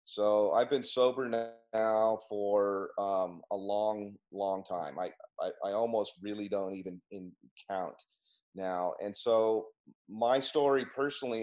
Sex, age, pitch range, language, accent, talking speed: male, 30-49, 95-115 Hz, English, American, 130 wpm